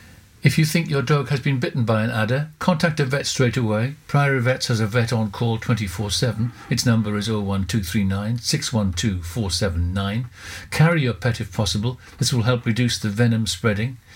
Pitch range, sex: 105-130 Hz, male